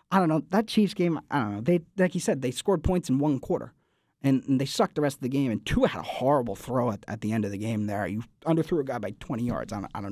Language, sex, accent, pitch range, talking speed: English, male, American, 145-185 Hz, 315 wpm